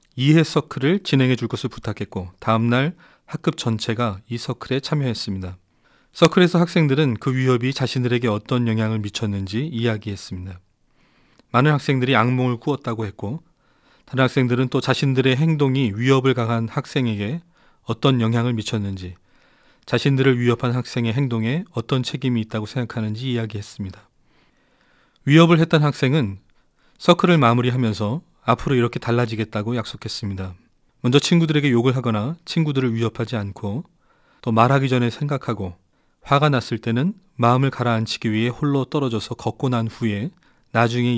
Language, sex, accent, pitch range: Korean, male, native, 110-140 Hz